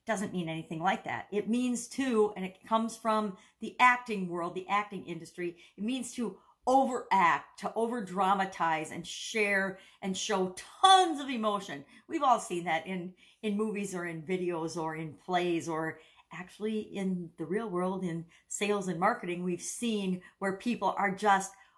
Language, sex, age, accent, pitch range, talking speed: English, female, 50-69, American, 165-205 Hz, 165 wpm